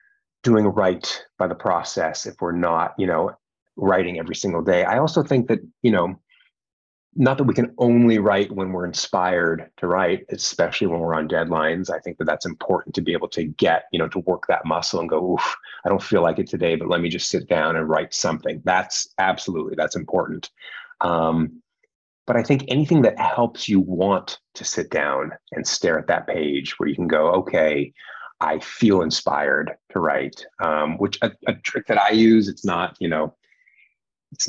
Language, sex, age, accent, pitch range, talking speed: English, male, 30-49, American, 90-125 Hz, 200 wpm